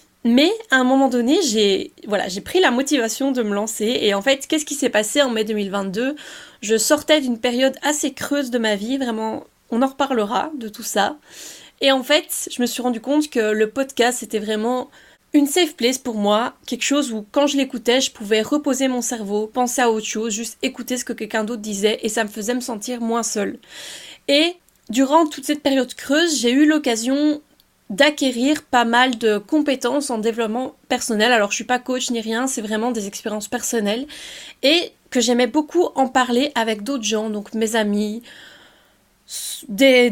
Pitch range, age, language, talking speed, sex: 220-275 Hz, 20-39, French, 195 wpm, female